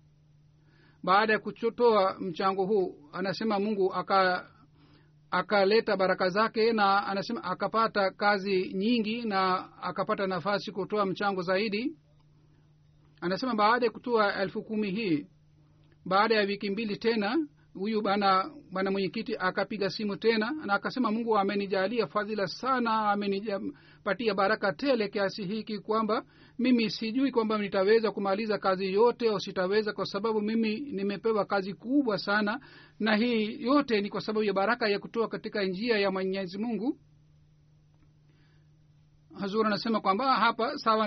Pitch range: 185-220 Hz